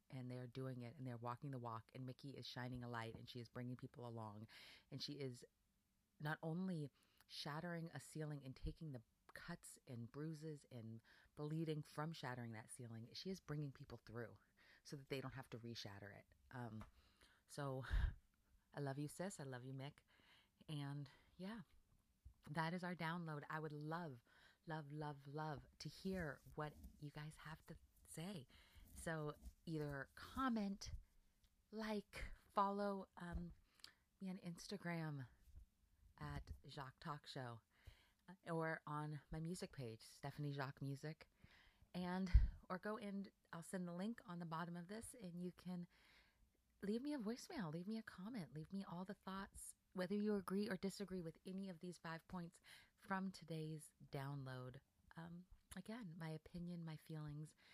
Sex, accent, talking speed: female, American, 160 wpm